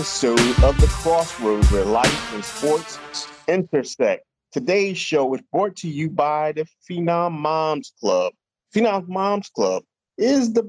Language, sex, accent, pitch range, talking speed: English, male, American, 125-160 Hz, 135 wpm